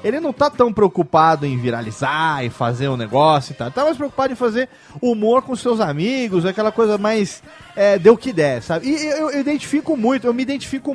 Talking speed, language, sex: 210 wpm, Portuguese, male